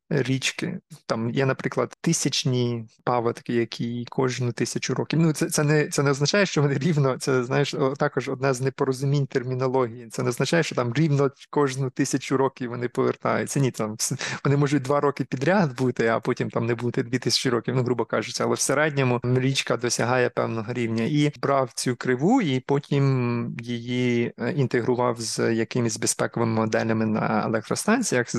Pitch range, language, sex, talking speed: 120-140 Hz, Ukrainian, male, 165 wpm